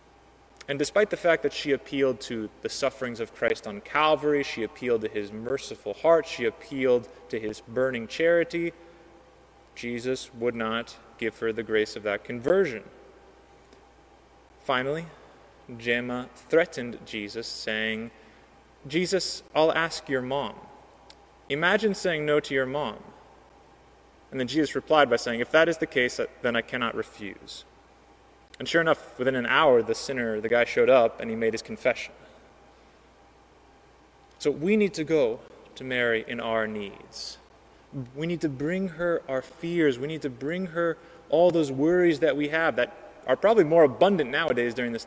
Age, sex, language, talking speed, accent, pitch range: 20-39, male, English, 160 wpm, American, 120-165 Hz